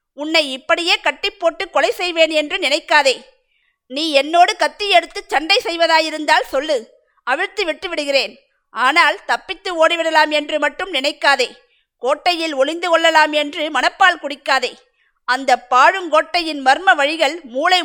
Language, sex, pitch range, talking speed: Tamil, female, 280-355 Hz, 120 wpm